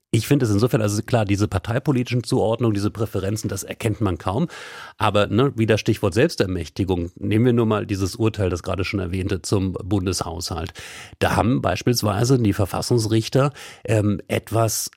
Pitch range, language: 95-115 Hz, German